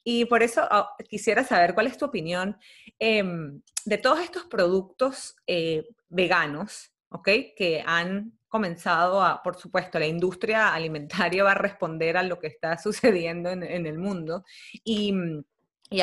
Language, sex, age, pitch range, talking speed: Spanish, female, 30-49, 170-210 Hz, 155 wpm